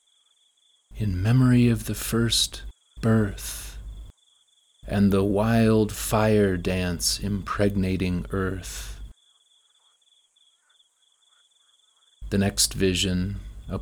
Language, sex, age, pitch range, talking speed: English, male, 40-59, 90-110 Hz, 75 wpm